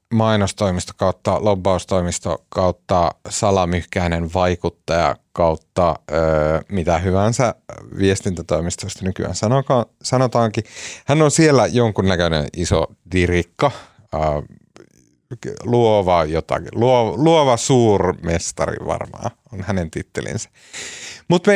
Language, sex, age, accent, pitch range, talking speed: Finnish, male, 30-49, native, 90-125 Hz, 85 wpm